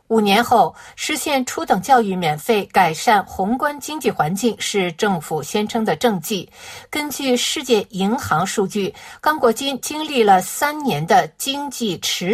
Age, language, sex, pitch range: 50-69, Chinese, female, 200-270 Hz